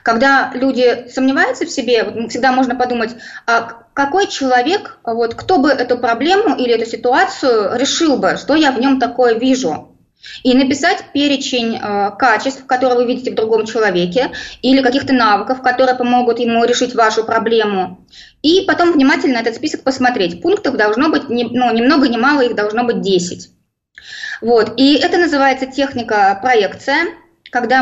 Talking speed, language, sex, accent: 150 wpm, Russian, female, native